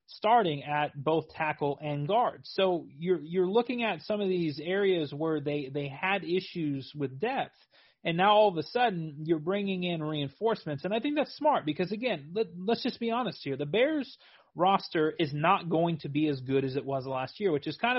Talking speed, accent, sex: 210 wpm, American, male